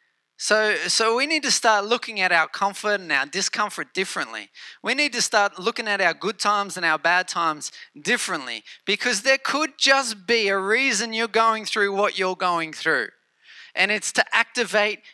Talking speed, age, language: 180 wpm, 30-49, English